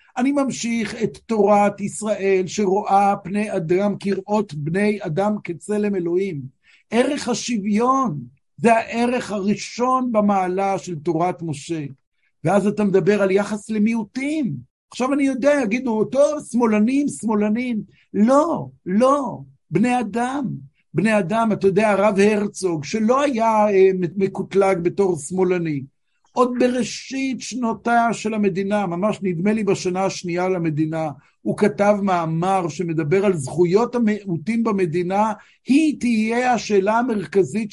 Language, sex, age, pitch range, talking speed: Hebrew, male, 60-79, 185-225 Hz, 115 wpm